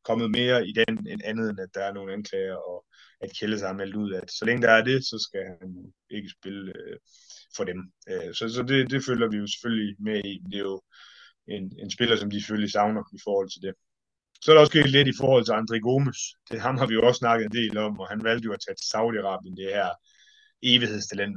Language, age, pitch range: Danish, 20-39, 100-130 Hz